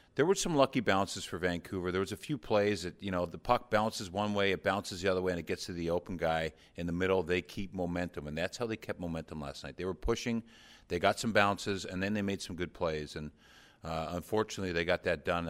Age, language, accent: 50-69, English, American